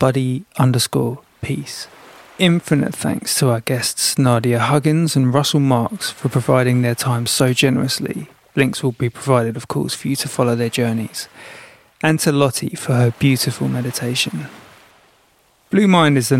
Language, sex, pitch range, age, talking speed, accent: English, male, 125-150 Hz, 20-39, 155 wpm, British